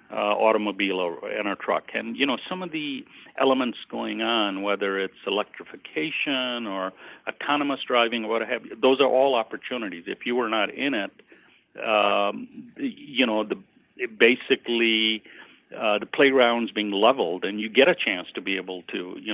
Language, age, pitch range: English, 50-69, 100-130 Hz